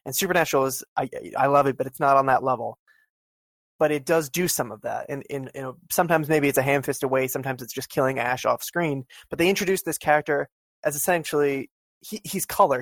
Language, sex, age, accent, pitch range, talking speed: English, male, 20-39, American, 130-155 Hz, 225 wpm